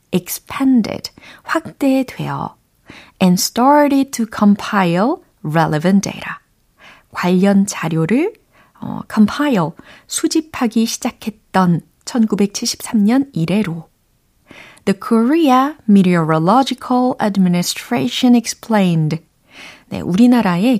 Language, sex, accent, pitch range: Korean, female, native, 180-250 Hz